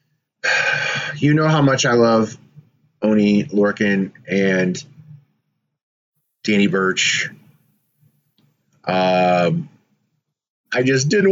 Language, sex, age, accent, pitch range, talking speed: English, male, 30-49, American, 110-145 Hz, 80 wpm